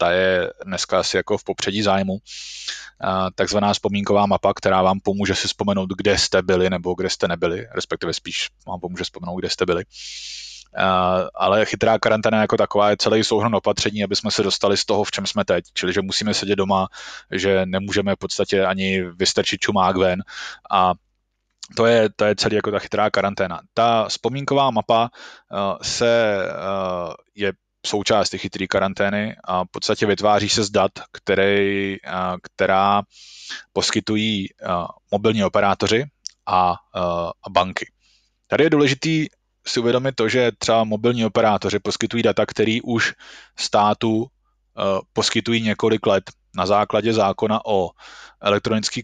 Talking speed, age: 145 wpm, 20-39